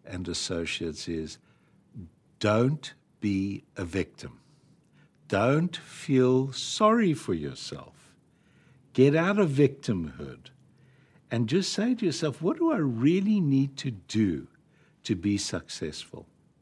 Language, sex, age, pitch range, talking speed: English, male, 60-79, 105-150 Hz, 110 wpm